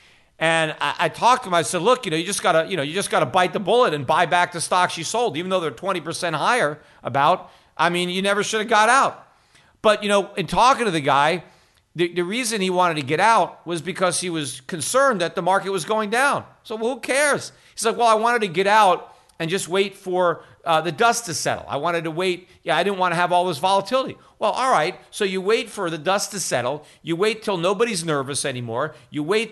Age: 50-69